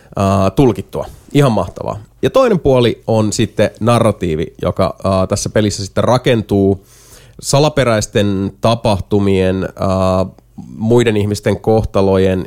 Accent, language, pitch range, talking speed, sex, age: native, Finnish, 95-120 Hz, 90 wpm, male, 30-49